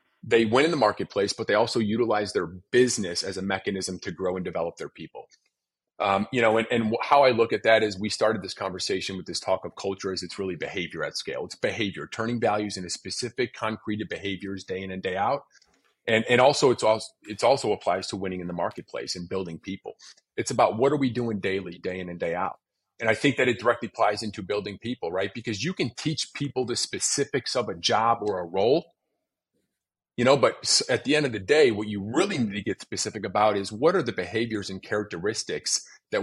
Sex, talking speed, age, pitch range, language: male, 225 wpm, 30-49, 95-120 Hz, English